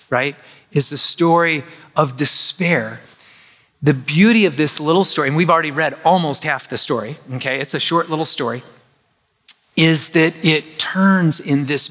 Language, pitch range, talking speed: English, 145-190 Hz, 160 wpm